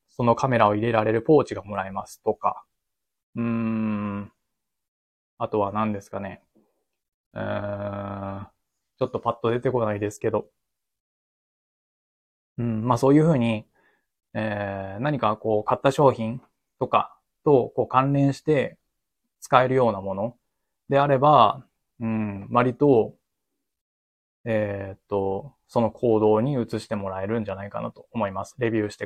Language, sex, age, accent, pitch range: Japanese, male, 20-39, native, 105-125 Hz